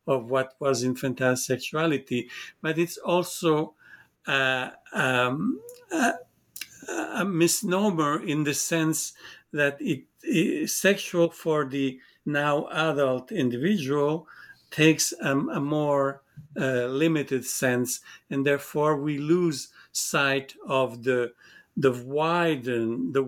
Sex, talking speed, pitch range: male, 110 wpm, 130-170 Hz